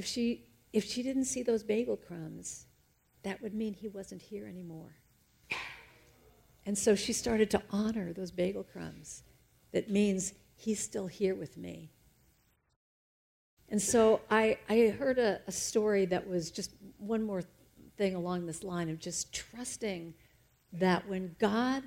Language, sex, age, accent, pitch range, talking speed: English, female, 50-69, American, 170-225 Hz, 150 wpm